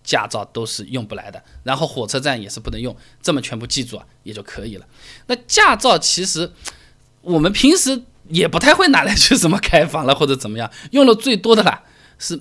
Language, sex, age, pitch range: Chinese, male, 20-39, 125-195 Hz